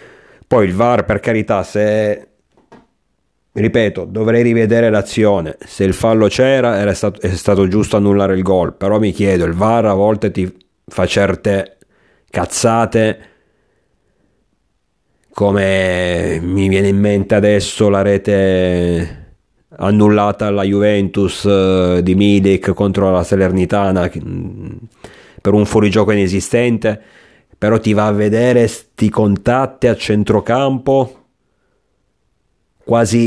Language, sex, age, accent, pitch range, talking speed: Italian, male, 40-59, native, 95-110 Hz, 115 wpm